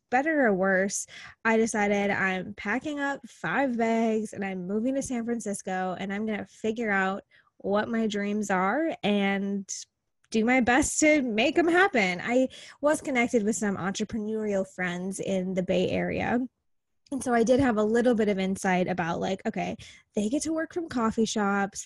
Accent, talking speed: American, 180 wpm